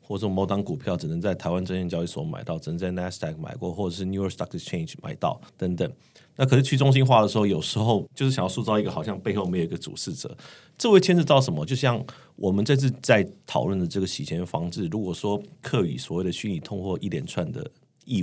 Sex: male